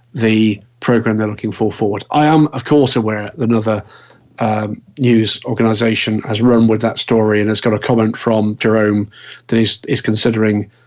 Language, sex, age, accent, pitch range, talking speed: English, male, 40-59, British, 110-125 Hz, 175 wpm